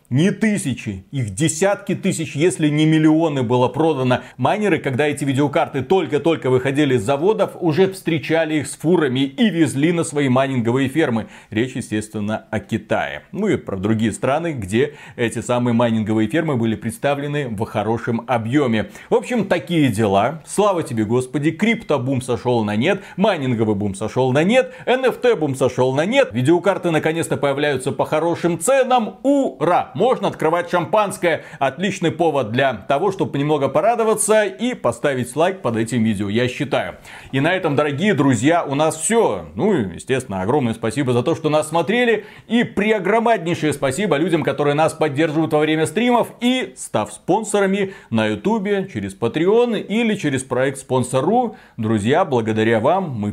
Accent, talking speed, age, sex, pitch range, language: native, 155 wpm, 40-59, male, 125-180 Hz, Russian